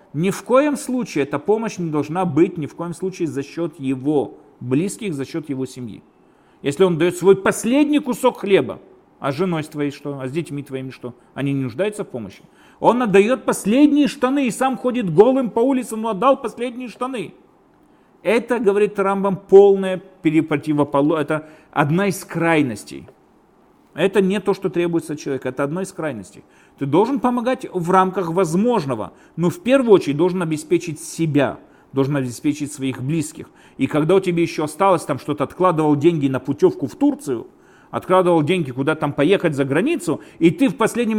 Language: Russian